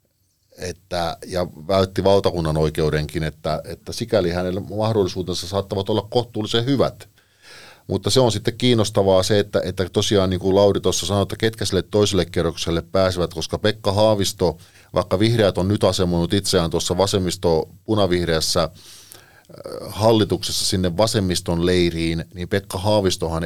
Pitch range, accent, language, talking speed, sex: 85-105 Hz, native, Finnish, 135 wpm, male